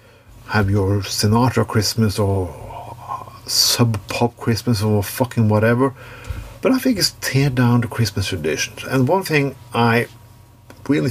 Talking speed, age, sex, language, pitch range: 130 wpm, 50-69, male, English, 110-125 Hz